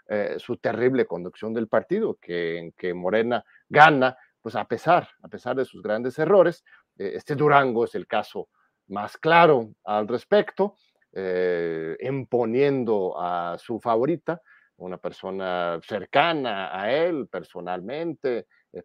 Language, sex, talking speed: Spanish, male, 135 wpm